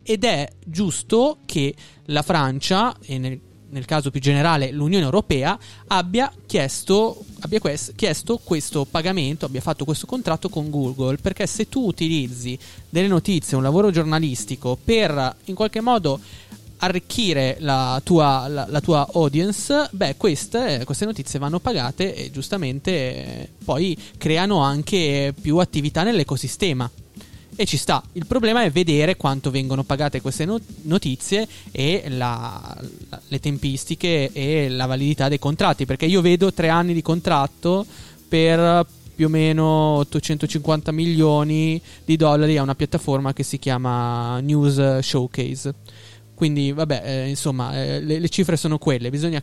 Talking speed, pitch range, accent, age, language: 145 wpm, 135-175 Hz, native, 20-39, Italian